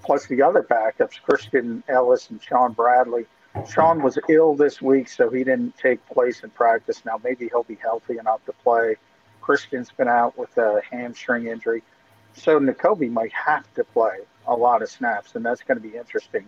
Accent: American